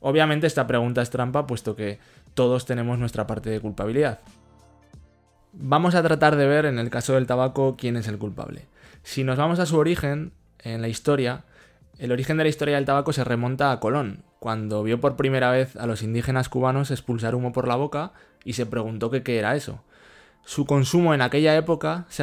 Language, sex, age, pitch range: Spanish, male, 20-39, 120-145 Hz